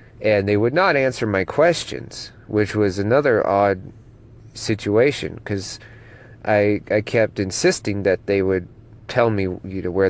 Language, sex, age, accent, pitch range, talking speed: English, male, 40-59, American, 100-115 Hz, 150 wpm